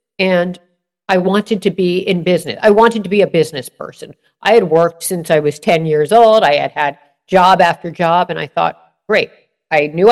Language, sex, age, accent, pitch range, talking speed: English, female, 50-69, American, 155-200 Hz, 210 wpm